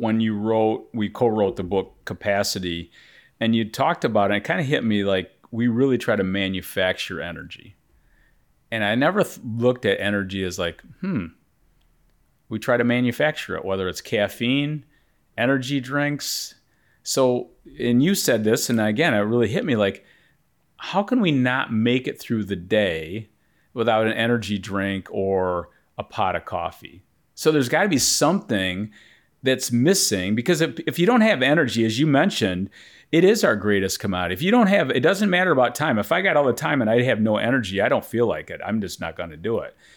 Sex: male